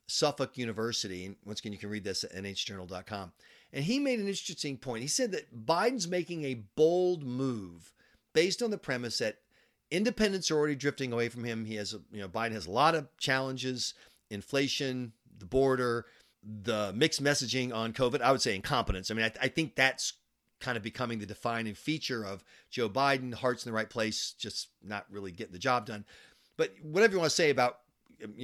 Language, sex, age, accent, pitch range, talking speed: English, male, 40-59, American, 105-135 Hz, 200 wpm